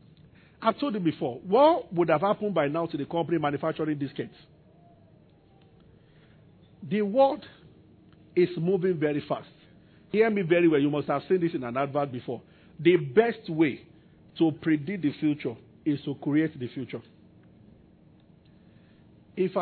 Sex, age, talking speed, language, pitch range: male, 50-69, 145 wpm, English, 145-185 Hz